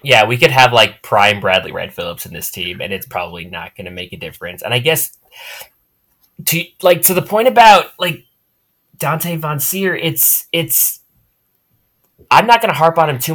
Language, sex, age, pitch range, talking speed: English, male, 20-39, 110-160 Hz, 200 wpm